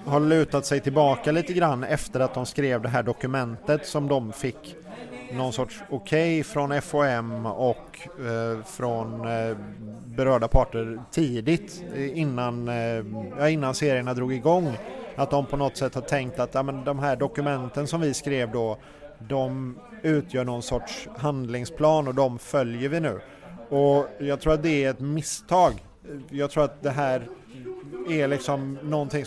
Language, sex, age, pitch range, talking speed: Swedish, male, 30-49, 130-150 Hz, 150 wpm